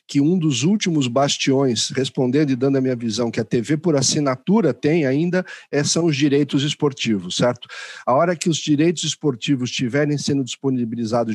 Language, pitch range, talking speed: Portuguese, 125-150 Hz, 170 wpm